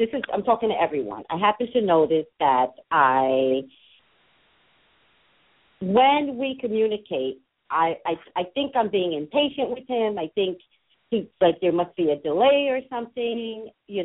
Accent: American